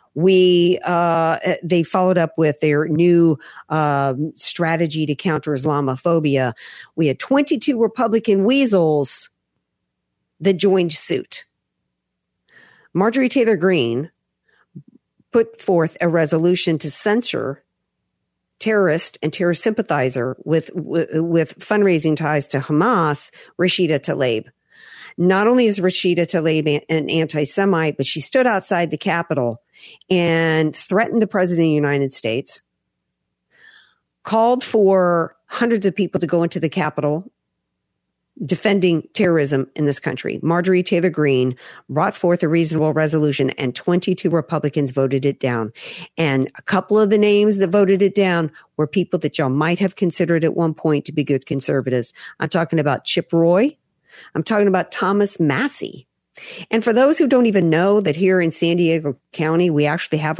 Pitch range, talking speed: 150-185 Hz, 140 wpm